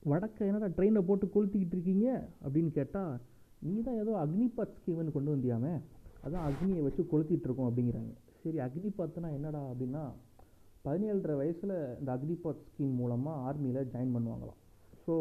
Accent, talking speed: native, 135 wpm